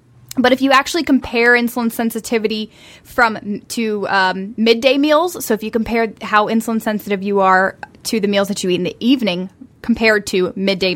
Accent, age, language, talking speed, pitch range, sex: American, 10-29, English, 180 wpm, 210-260 Hz, female